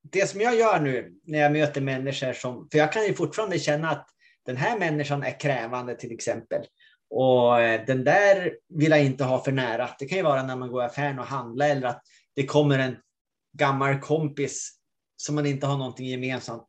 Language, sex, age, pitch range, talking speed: Swedish, male, 30-49, 130-165 Hz, 205 wpm